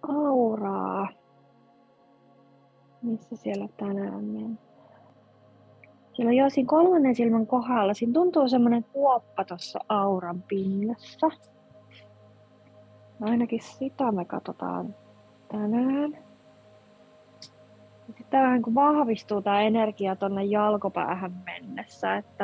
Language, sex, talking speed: Finnish, female, 85 wpm